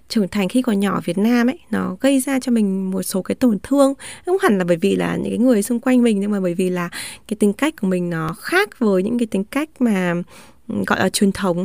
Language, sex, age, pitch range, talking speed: Vietnamese, female, 20-39, 195-245 Hz, 280 wpm